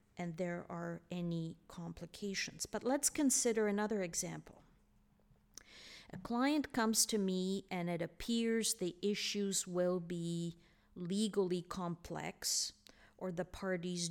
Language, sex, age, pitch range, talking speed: English, female, 50-69, 165-195 Hz, 115 wpm